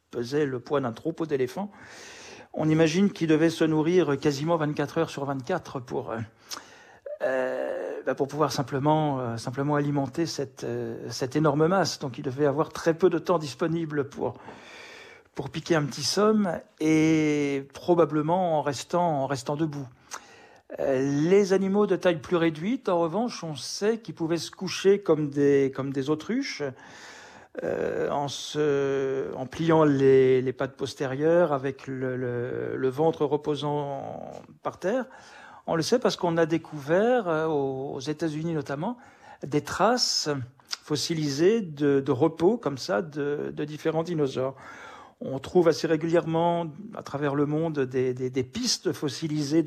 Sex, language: male, French